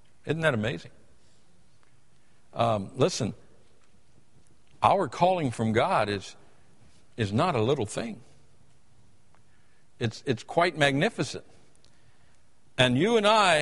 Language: English